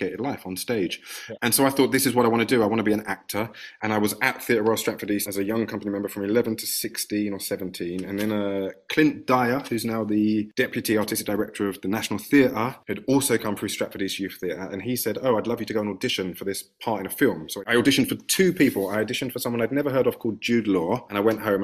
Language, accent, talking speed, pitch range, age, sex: English, British, 275 wpm, 100-120 Hz, 30-49, male